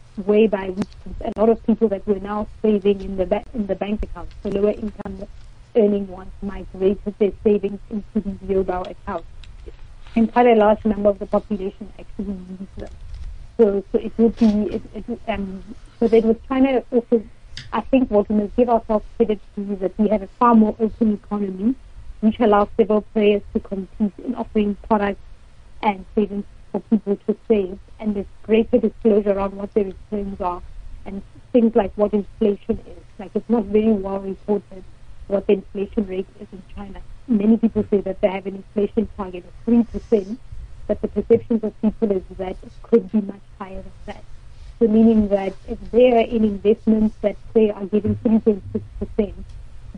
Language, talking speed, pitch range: English, 185 wpm, 200-225 Hz